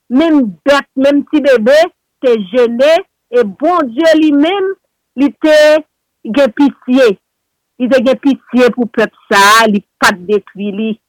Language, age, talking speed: French, 50-69, 130 wpm